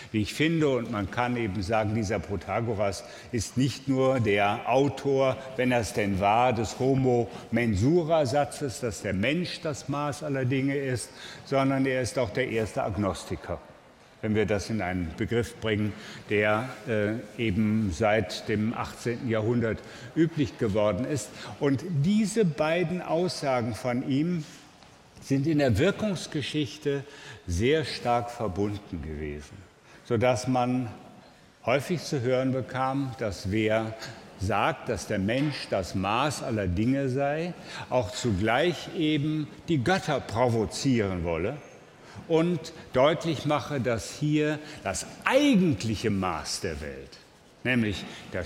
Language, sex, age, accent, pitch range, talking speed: German, male, 60-79, German, 110-150 Hz, 130 wpm